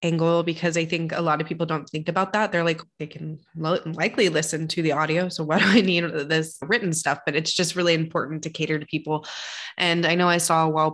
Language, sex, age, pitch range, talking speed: English, female, 20-39, 155-180 Hz, 245 wpm